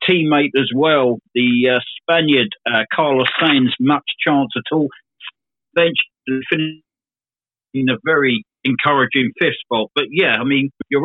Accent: British